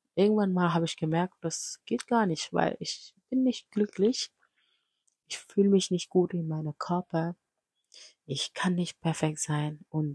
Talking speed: 165 wpm